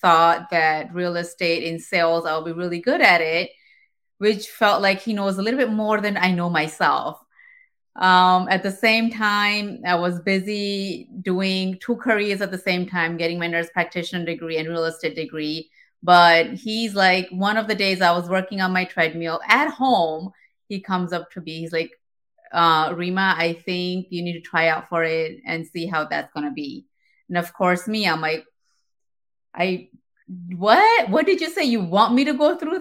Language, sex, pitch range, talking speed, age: English, female, 175-225 Hz, 195 wpm, 30-49